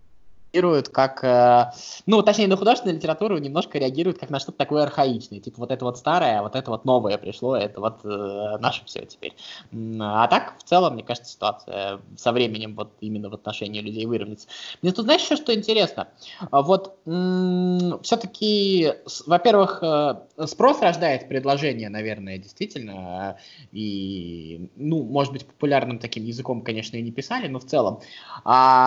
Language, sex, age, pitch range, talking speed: Russian, male, 20-39, 115-180 Hz, 155 wpm